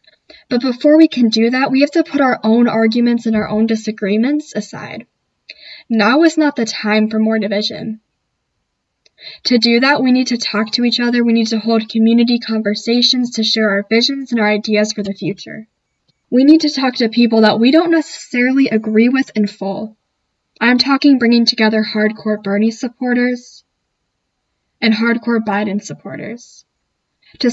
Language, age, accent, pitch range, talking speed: English, 10-29, American, 215-255 Hz, 170 wpm